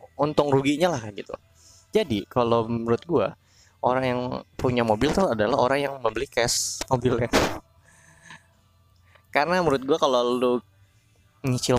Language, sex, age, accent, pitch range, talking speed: Indonesian, male, 20-39, native, 105-135 Hz, 125 wpm